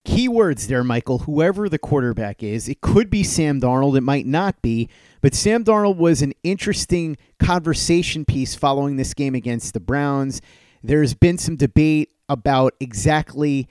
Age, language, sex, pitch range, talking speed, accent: 30-49, English, male, 135-170 Hz, 160 wpm, American